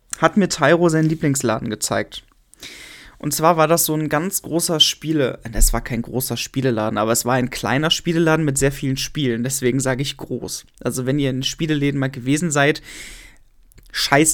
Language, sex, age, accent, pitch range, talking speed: German, male, 20-39, German, 130-165 Hz, 185 wpm